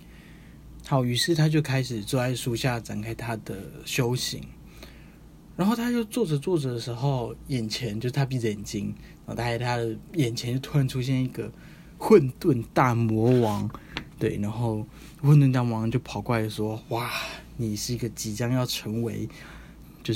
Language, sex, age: Chinese, male, 20-39